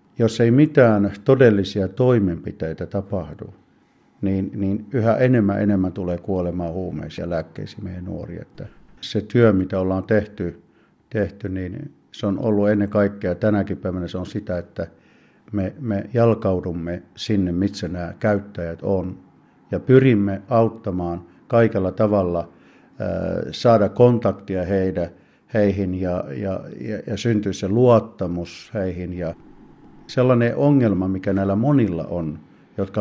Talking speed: 125 wpm